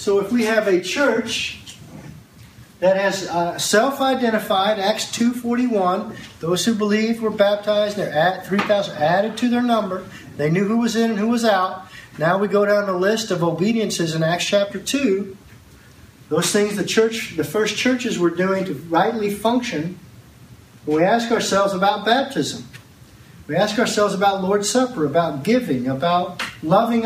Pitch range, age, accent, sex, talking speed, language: 170-225 Hz, 40-59, American, male, 160 wpm, English